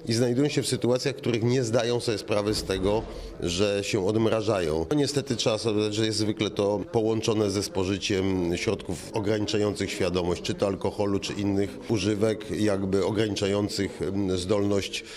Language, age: Polish, 40-59